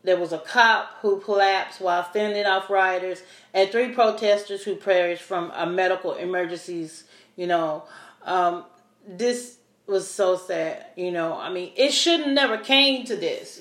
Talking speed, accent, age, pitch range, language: 160 wpm, American, 40-59, 175-230 Hz, English